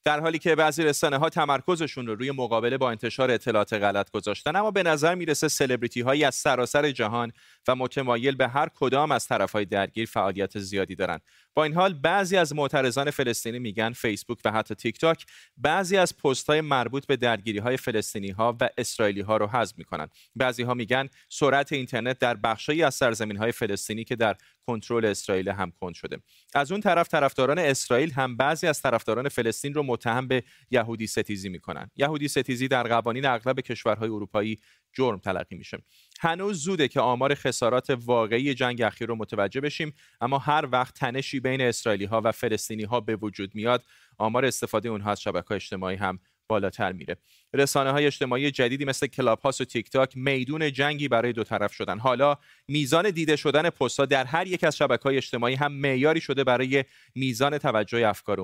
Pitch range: 115-140 Hz